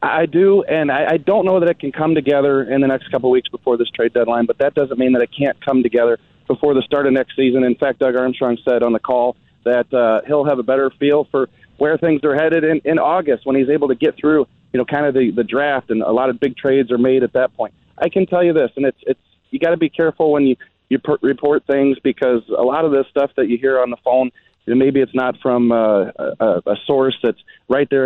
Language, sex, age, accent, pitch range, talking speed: English, male, 30-49, American, 130-160 Hz, 270 wpm